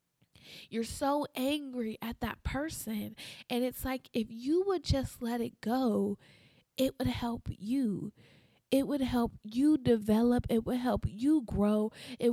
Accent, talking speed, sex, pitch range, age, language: American, 150 wpm, female, 195-250 Hz, 20-39, English